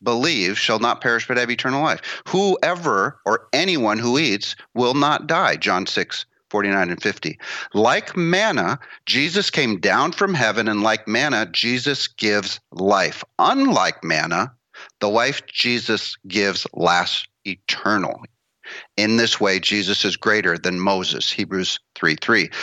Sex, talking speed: male, 140 wpm